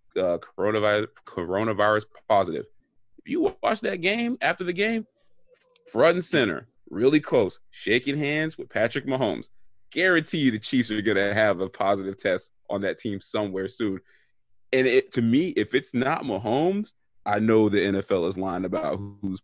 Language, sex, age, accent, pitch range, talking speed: English, male, 30-49, American, 100-135 Hz, 165 wpm